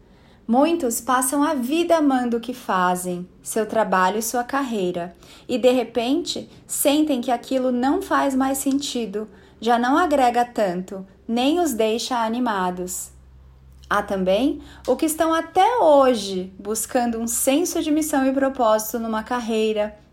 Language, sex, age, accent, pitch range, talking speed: Portuguese, female, 30-49, Brazilian, 205-275 Hz, 140 wpm